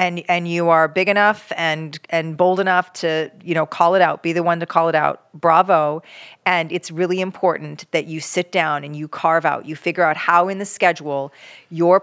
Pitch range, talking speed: 165-190 Hz, 220 wpm